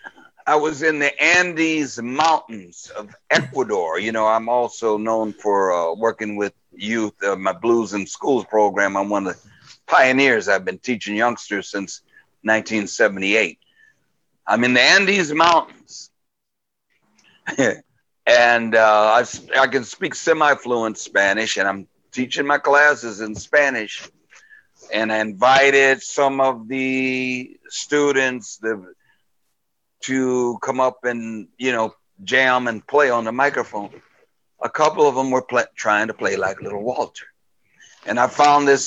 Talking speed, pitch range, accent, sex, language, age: 140 wpm, 110-145 Hz, American, male, English, 60-79